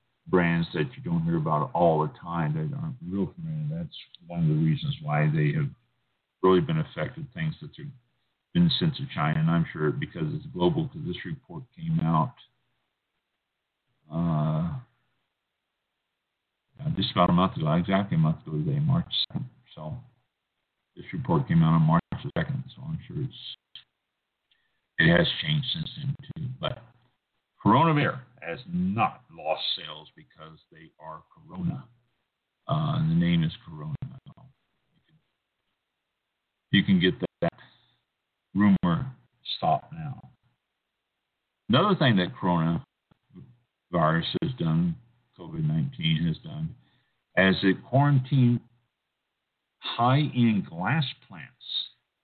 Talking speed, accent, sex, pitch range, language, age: 135 wpm, American, male, 125-160 Hz, English, 50-69